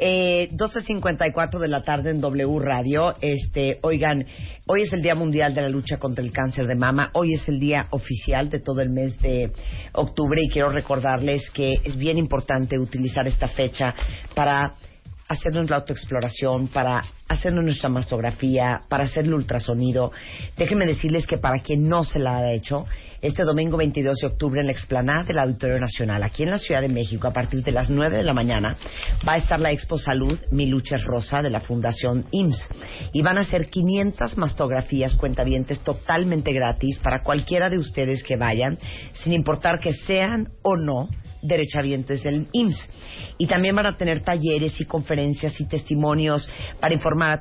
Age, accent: 40-59, Mexican